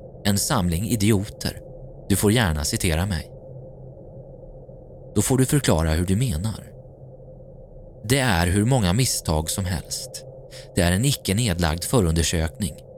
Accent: native